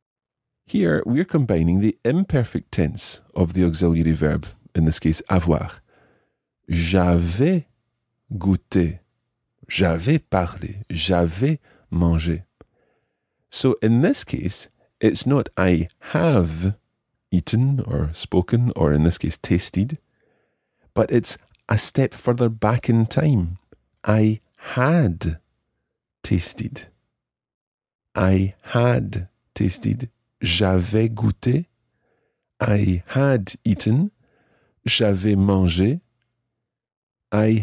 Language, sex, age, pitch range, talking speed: English, male, 40-59, 90-120 Hz, 90 wpm